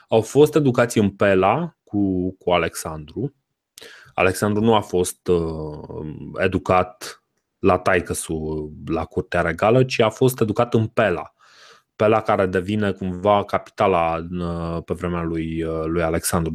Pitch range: 95-125 Hz